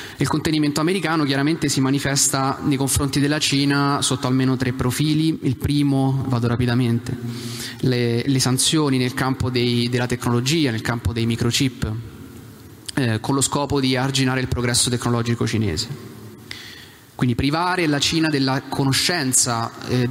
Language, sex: Italian, male